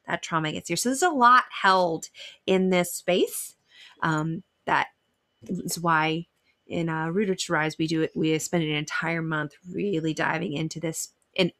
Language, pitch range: English, 160-195 Hz